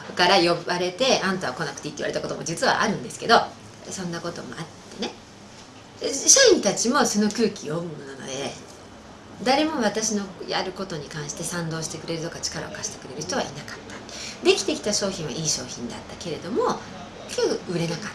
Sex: female